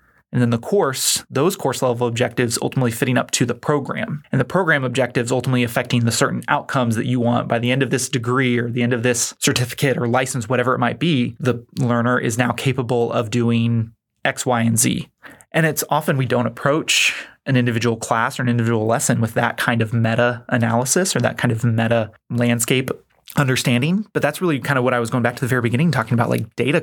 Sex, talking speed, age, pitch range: male, 220 wpm, 20-39, 120-130 Hz